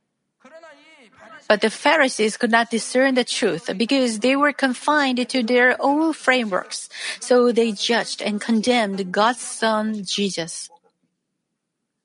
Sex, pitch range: female, 220-270 Hz